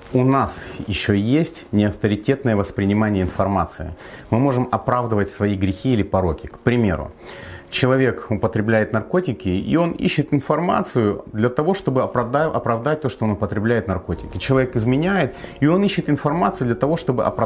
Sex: male